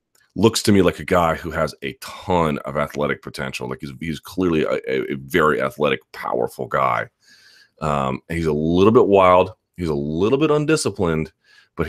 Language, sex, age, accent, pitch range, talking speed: English, male, 30-49, American, 75-95 Hz, 175 wpm